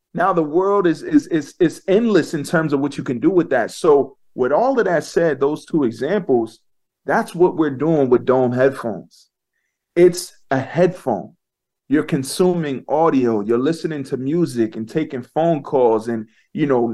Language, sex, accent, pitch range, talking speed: English, male, American, 130-170 Hz, 175 wpm